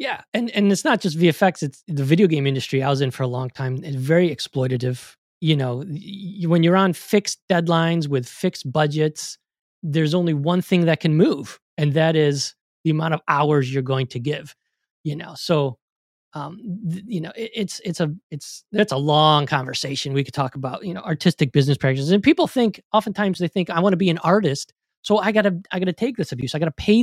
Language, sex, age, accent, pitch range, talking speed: English, male, 30-49, American, 140-185 Hz, 225 wpm